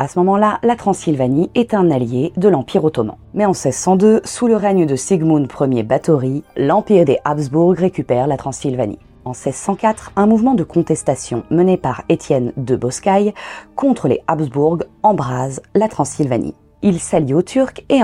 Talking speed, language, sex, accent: 165 wpm, French, female, French